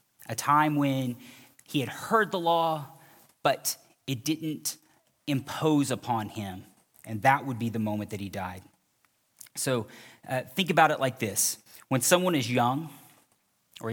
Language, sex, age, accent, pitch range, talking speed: English, male, 30-49, American, 115-150 Hz, 150 wpm